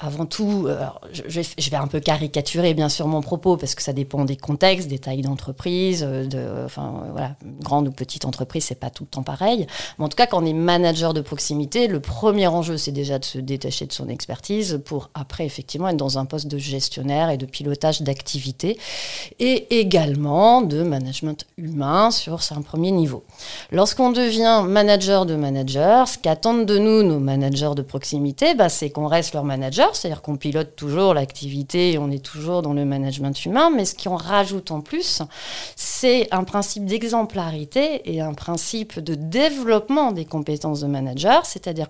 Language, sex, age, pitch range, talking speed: French, female, 40-59, 145-215 Hz, 190 wpm